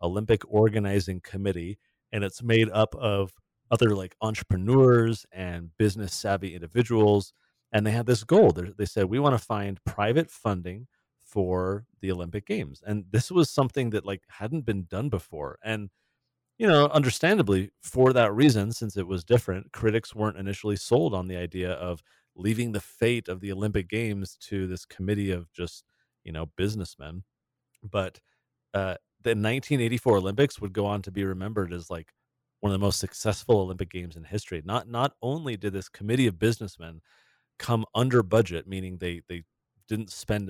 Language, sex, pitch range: English, male, 95-120 Hz